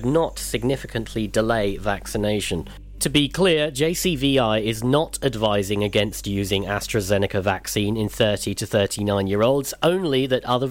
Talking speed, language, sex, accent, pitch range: 135 wpm, English, male, British, 105-135 Hz